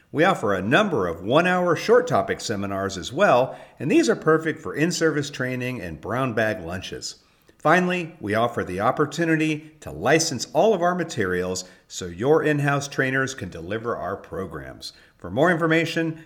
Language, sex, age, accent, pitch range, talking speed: English, male, 50-69, American, 100-155 Hz, 160 wpm